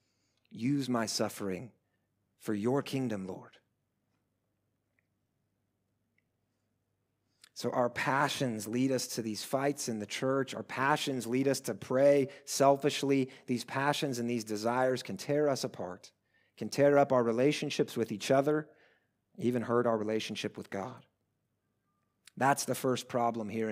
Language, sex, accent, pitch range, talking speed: English, male, American, 110-140 Hz, 135 wpm